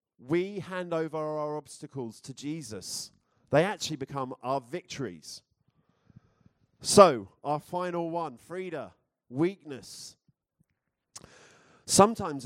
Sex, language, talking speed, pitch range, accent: male, English, 90 wpm, 130-175 Hz, British